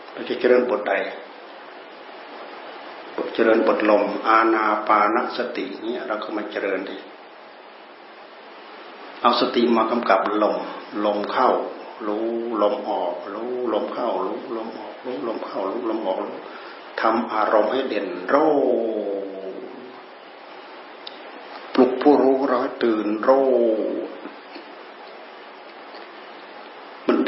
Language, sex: Thai, male